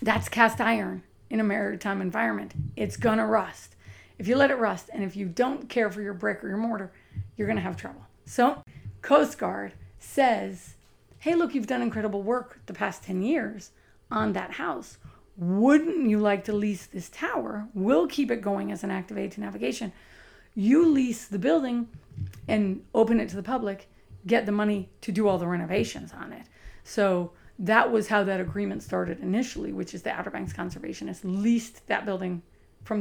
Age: 40-59